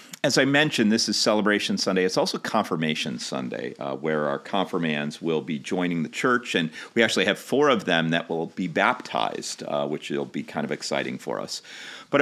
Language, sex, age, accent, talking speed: English, male, 40-59, American, 200 wpm